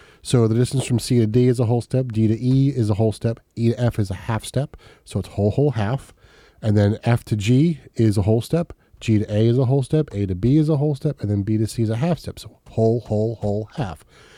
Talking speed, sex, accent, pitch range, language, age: 280 wpm, male, American, 110-135 Hz, English, 30-49